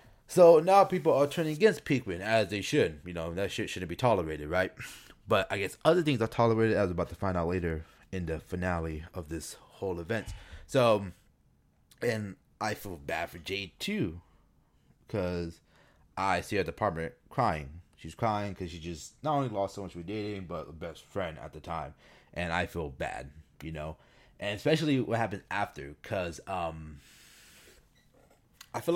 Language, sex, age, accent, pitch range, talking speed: English, male, 30-49, American, 90-150 Hz, 180 wpm